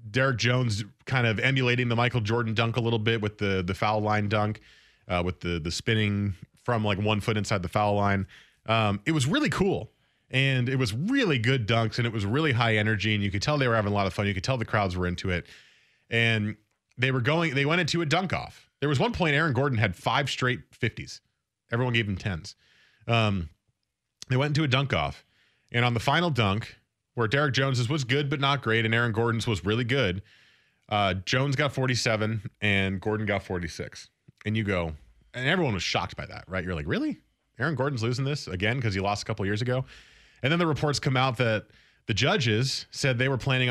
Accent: American